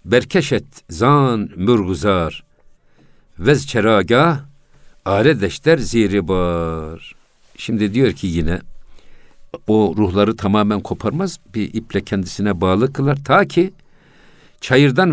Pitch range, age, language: 100-130 Hz, 60-79, Turkish